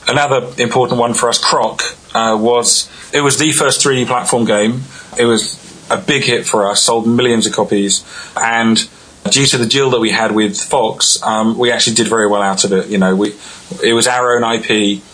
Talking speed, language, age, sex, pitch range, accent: 210 wpm, English, 30-49, male, 105-125 Hz, British